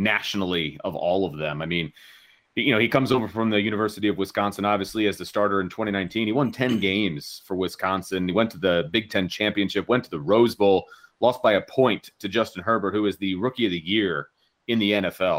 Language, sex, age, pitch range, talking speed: English, male, 30-49, 100-120 Hz, 225 wpm